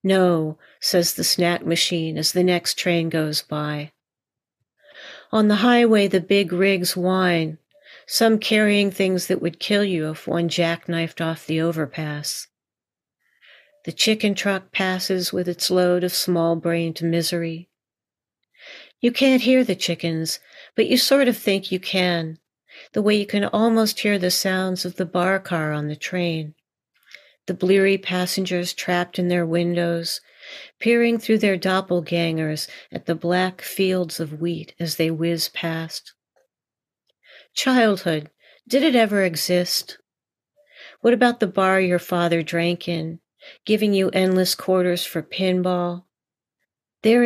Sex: female